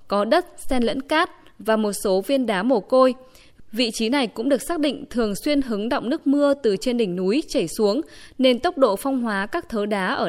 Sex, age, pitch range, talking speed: female, 20-39, 205-270 Hz, 235 wpm